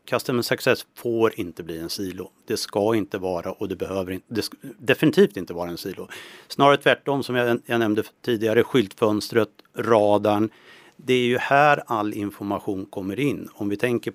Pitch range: 95-115 Hz